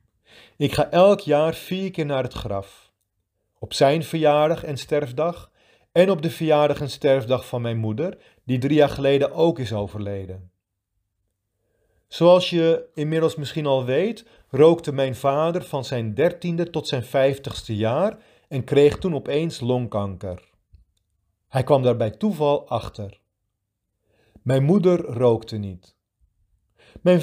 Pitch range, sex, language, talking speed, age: 105-160 Hz, male, Dutch, 135 wpm, 40-59